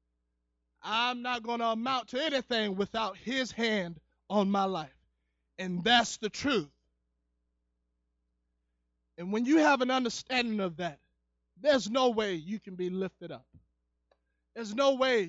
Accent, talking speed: American, 140 wpm